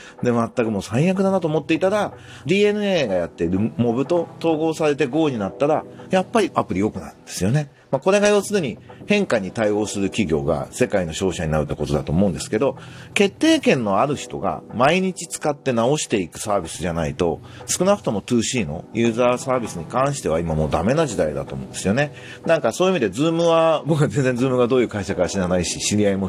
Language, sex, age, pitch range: Japanese, male, 40-59, 95-150 Hz